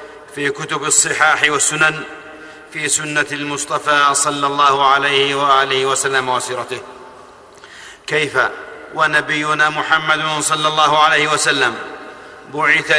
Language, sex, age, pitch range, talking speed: Arabic, male, 50-69, 145-160 Hz, 95 wpm